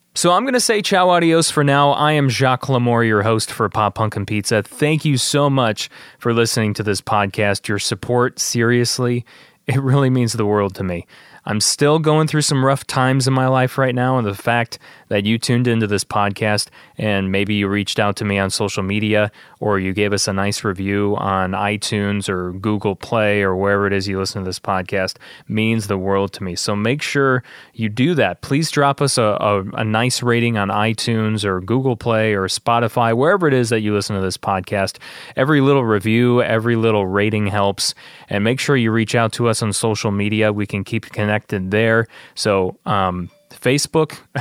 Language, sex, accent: English, male, American